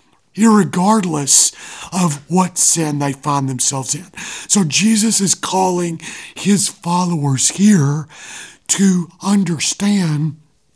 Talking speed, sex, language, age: 95 wpm, male, English, 40-59